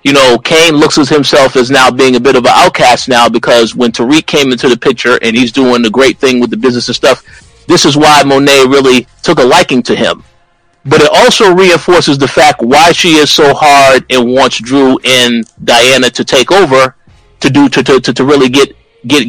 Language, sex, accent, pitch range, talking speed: English, male, American, 125-165 Hz, 220 wpm